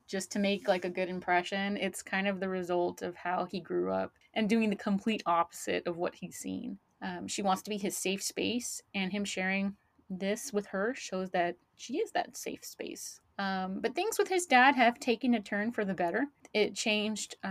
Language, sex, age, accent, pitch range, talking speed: English, female, 30-49, American, 185-210 Hz, 215 wpm